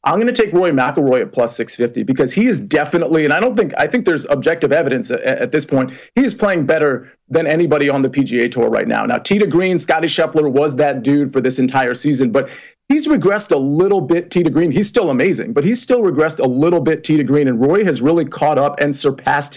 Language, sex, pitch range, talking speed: English, male, 135-165 Hz, 235 wpm